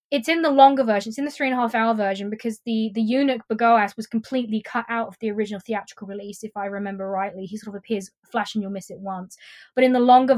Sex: female